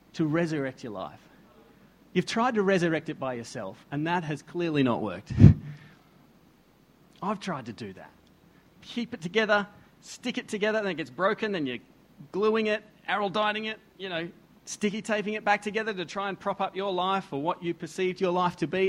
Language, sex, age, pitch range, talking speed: English, male, 40-59, 165-220 Hz, 190 wpm